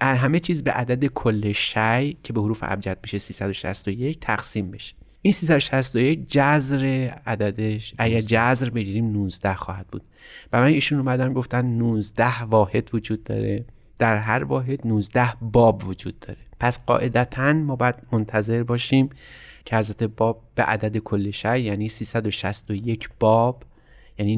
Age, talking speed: 30-49, 145 wpm